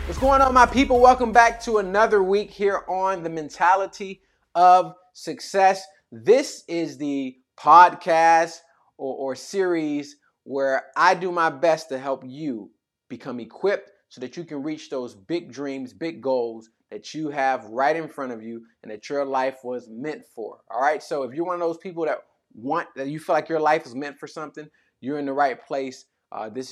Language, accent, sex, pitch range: English, American, male, 125-170 Hz